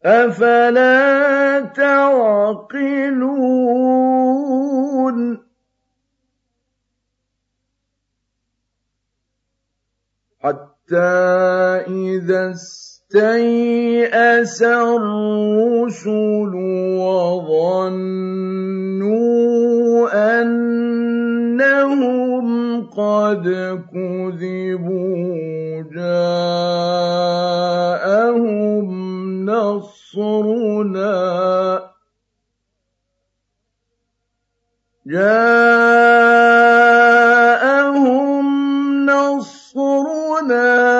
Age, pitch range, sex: 50-69, 155-235 Hz, male